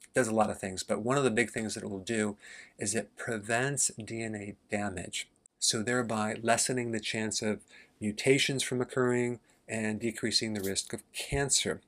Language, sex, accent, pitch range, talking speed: English, male, American, 105-125 Hz, 175 wpm